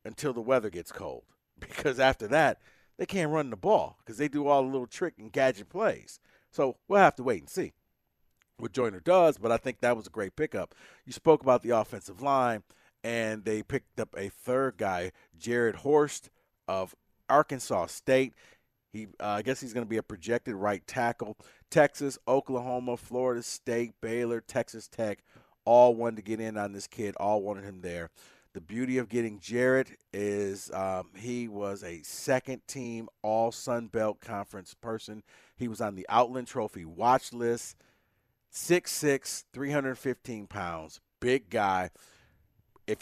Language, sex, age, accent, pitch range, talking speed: English, male, 40-59, American, 105-130 Hz, 165 wpm